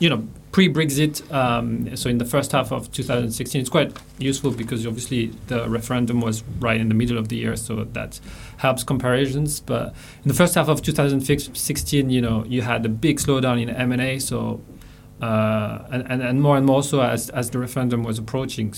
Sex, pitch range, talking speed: male, 115-135 Hz, 195 wpm